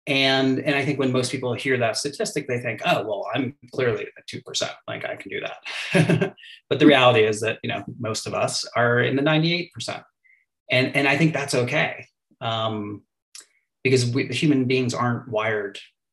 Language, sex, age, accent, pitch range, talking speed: English, male, 30-49, American, 110-135 Hz, 185 wpm